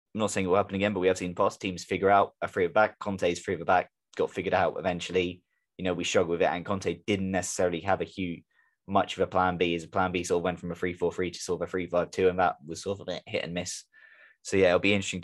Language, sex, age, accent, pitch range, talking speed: English, male, 10-29, British, 90-100 Hz, 290 wpm